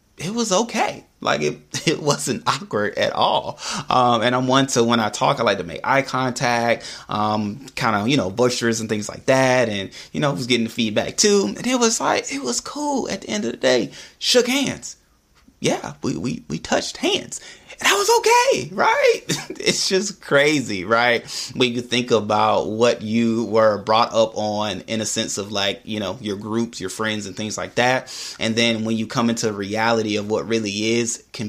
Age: 30-49